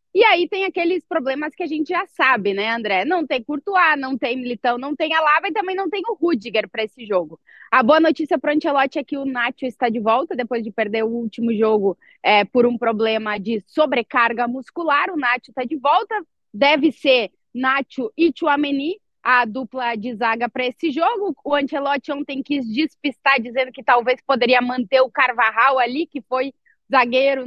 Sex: female